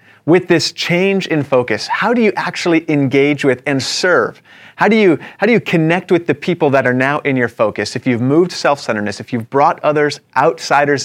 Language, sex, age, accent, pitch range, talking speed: English, male, 30-49, American, 130-165 Hz, 205 wpm